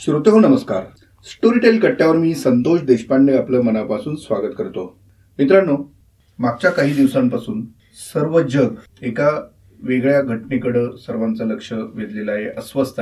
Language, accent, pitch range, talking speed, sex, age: Marathi, native, 115-140 Hz, 120 wpm, male, 30-49